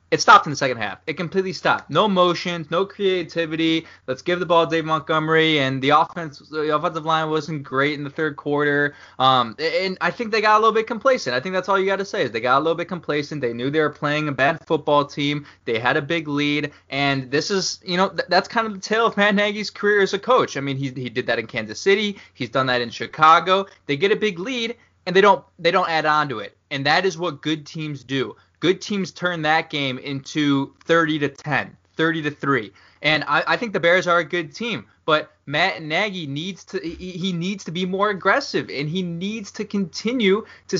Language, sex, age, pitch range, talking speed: English, male, 20-39, 145-195 Hz, 235 wpm